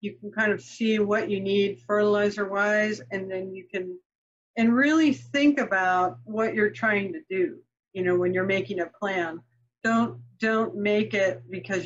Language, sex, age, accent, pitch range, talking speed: English, female, 50-69, American, 180-215 Hz, 170 wpm